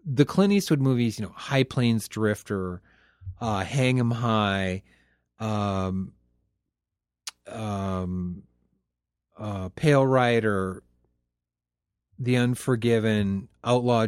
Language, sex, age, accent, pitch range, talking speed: English, male, 30-49, American, 105-145 Hz, 90 wpm